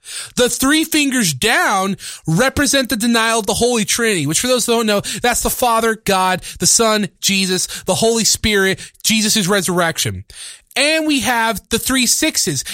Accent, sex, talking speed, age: American, male, 165 wpm, 30-49